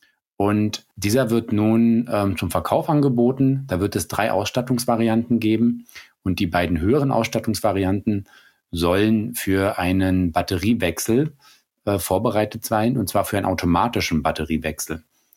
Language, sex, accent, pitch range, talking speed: German, male, German, 90-115 Hz, 125 wpm